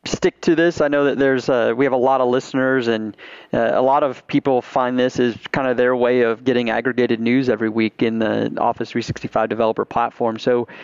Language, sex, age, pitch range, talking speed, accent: English, male, 30-49, 115-130 Hz, 220 wpm, American